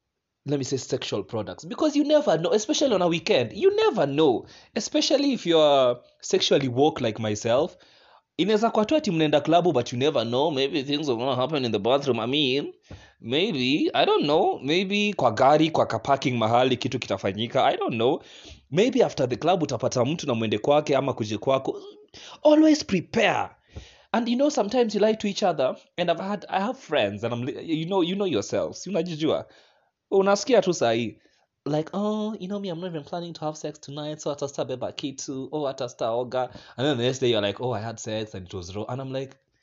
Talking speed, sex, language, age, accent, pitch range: 190 wpm, male, English, 20-39, South African, 120-195 Hz